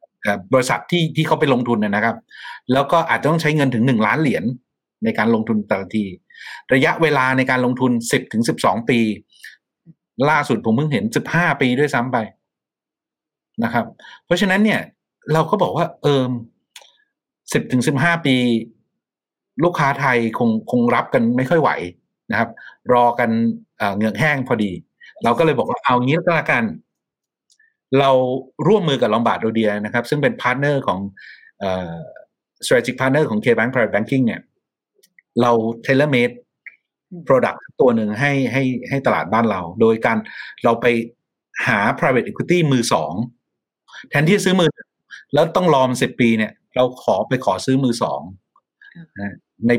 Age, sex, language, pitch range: 60-79, male, Thai, 115-155 Hz